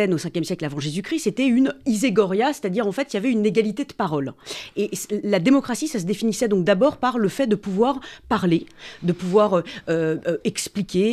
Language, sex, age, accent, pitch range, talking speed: French, female, 40-59, French, 165-225 Hz, 205 wpm